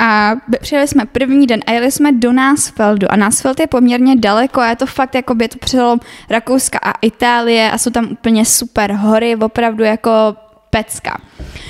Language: Czech